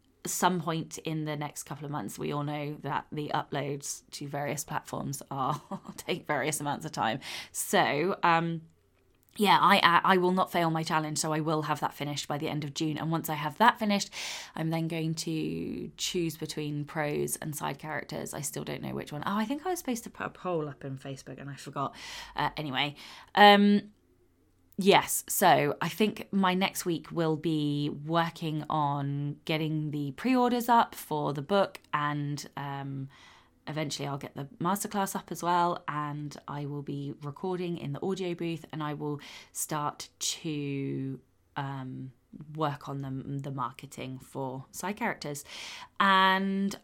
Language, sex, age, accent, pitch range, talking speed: English, female, 20-39, British, 140-180 Hz, 175 wpm